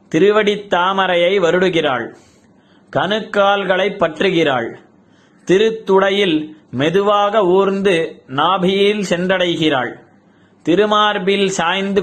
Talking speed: 60 wpm